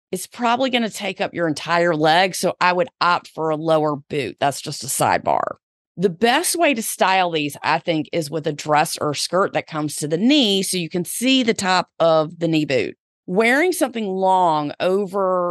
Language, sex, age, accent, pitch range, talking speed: English, female, 30-49, American, 160-210 Hz, 210 wpm